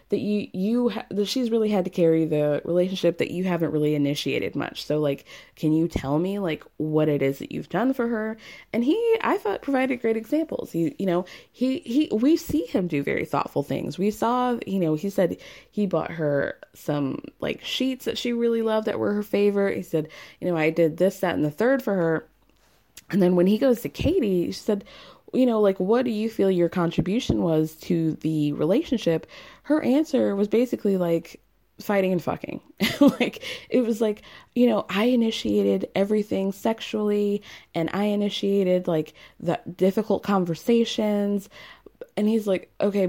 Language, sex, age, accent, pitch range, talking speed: English, female, 20-39, American, 165-230 Hz, 190 wpm